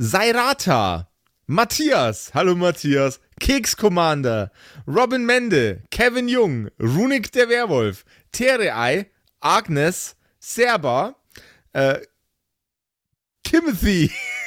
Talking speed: 75 wpm